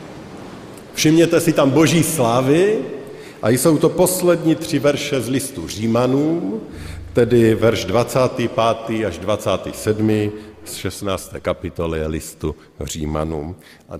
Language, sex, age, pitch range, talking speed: Slovak, male, 50-69, 90-125 Hz, 105 wpm